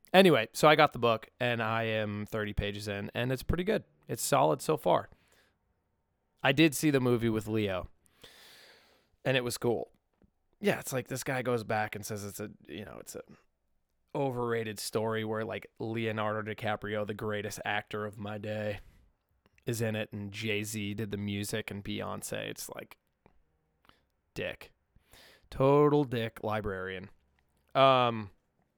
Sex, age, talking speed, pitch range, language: male, 20-39, 155 wpm, 105-125 Hz, English